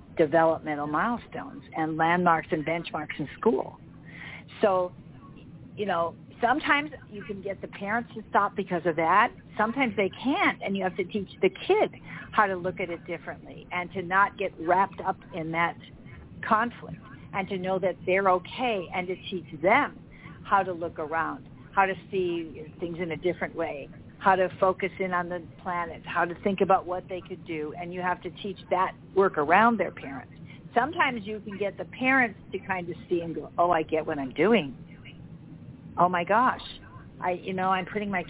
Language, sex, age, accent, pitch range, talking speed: English, female, 50-69, American, 170-200 Hz, 190 wpm